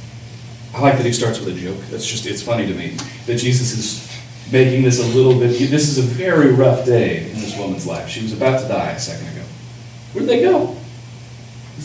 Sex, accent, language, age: male, American, English, 40-59